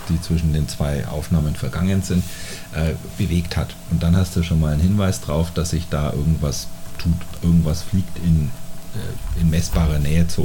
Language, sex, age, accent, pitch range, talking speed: German, male, 40-59, German, 80-90 Hz, 185 wpm